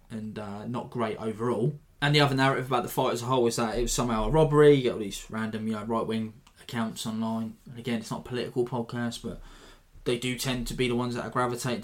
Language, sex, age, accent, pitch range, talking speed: English, male, 20-39, British, 115-130 Hz, 260 wpm